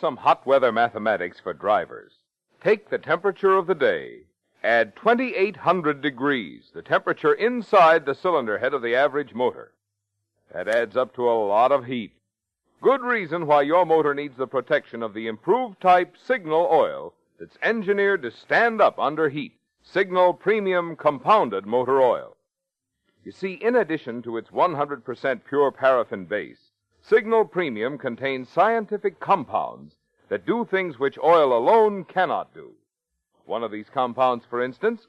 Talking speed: 150 wpm